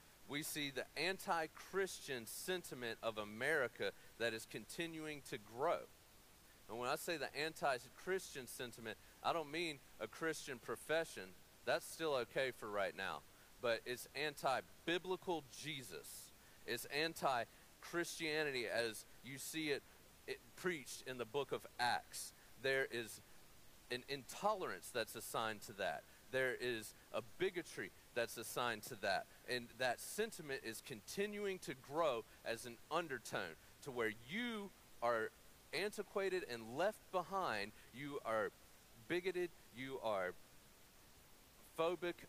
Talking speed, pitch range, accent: 125 wpm, 120-175 Hz, American